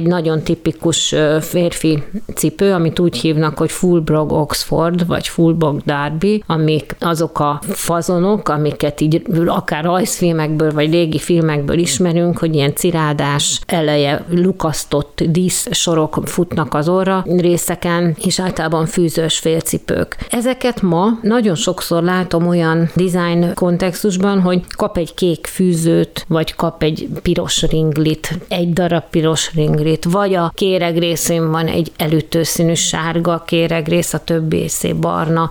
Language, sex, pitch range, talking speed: Hungarian, female, 160-180 Hz, 130 wpm